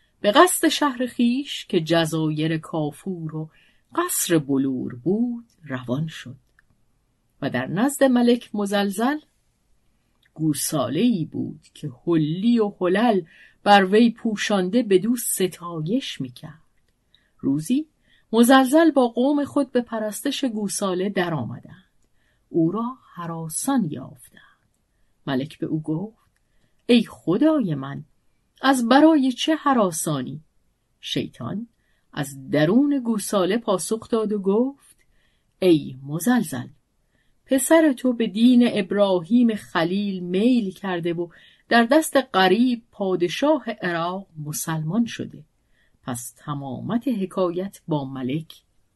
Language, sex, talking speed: Persian, female, 105 wpm